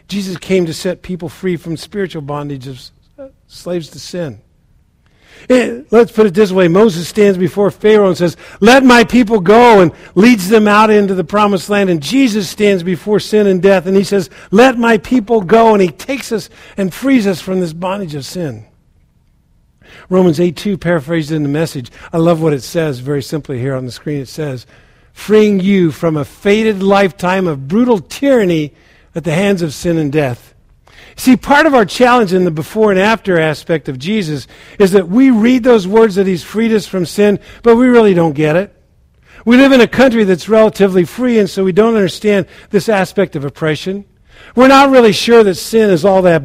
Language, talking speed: English, 200 wpm